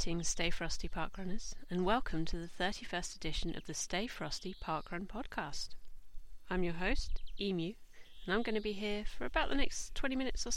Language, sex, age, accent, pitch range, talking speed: English, female, 40-59, British, 160-200 Hz, 180 wpm